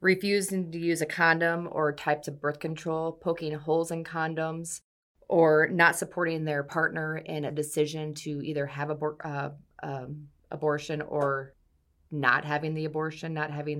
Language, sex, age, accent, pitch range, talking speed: English, female, 30-49, American, 145-170 Hz, 150 wpm